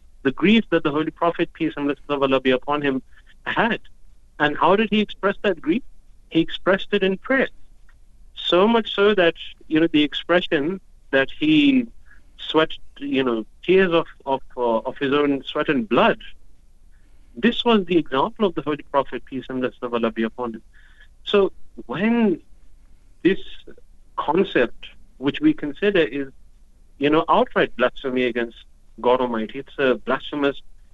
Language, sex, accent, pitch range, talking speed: English, male, Indian, 130-175 Hz, 165 wpm